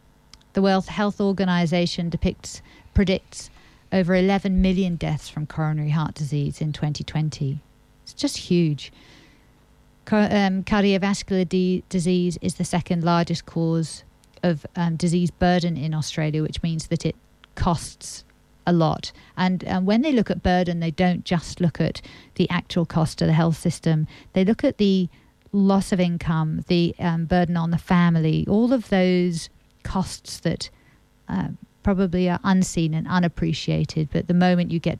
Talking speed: 155 wpm